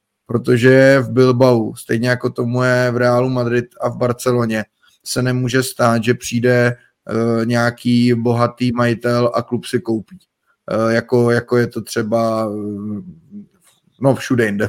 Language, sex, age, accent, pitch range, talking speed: Czech, male, 20-39, native, 115-130 Hz, 145 wpm